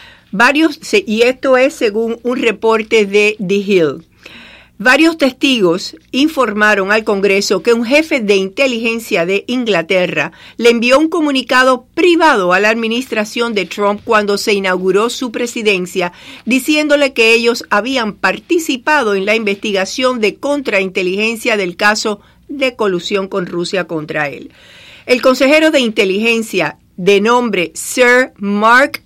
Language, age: English, 50-69